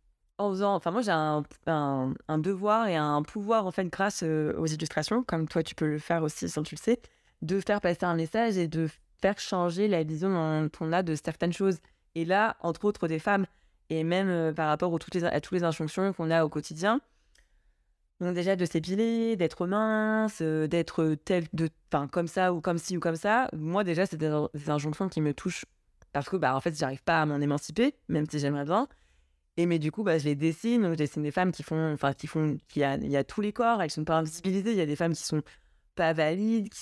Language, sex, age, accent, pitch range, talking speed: French, female, 20-39, French, 155-190 Hz, 240 wpm